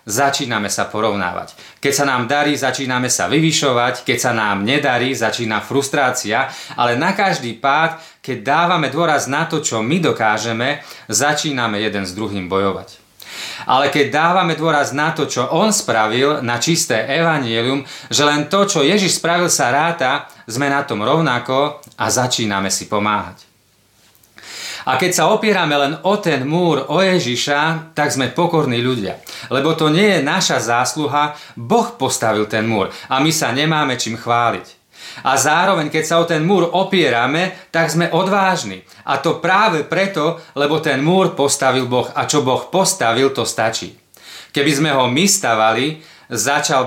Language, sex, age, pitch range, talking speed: Slovak, male, 30-49, 120-160 Hz, 155 wpm